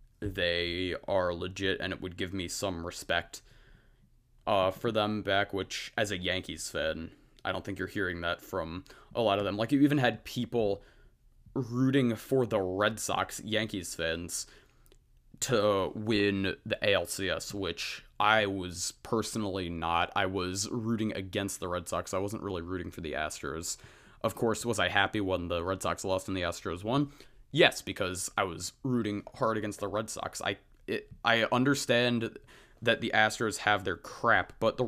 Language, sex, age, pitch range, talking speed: English, male, 20-39, 95-115 Hz, 175 wpm